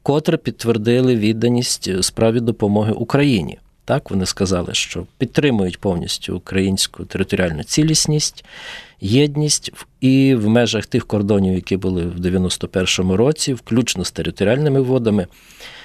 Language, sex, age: Ukrainian, male, 40-59